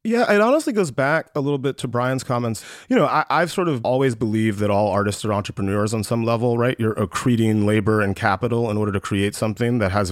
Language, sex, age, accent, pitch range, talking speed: English, male, 30-49, American, 115-150 Hz, 230 wpm